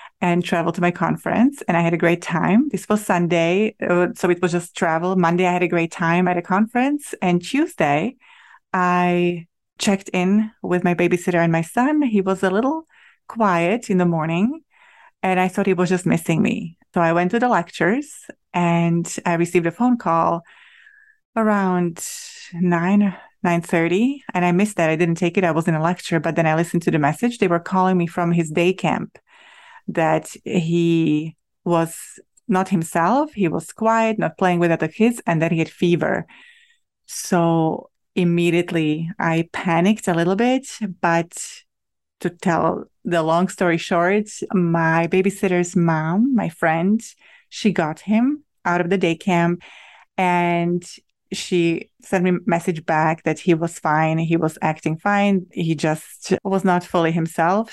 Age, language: 30-49, English